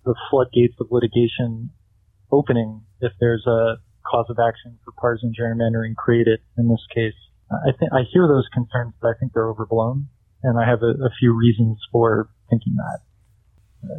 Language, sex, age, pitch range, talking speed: English, male, 20-39, 110-125 Hz, 170 wpm